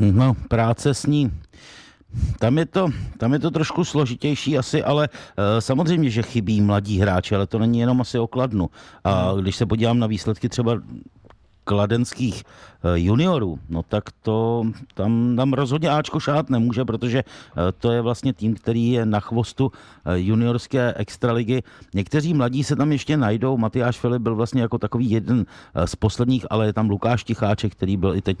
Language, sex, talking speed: Czech, male, 165 wpm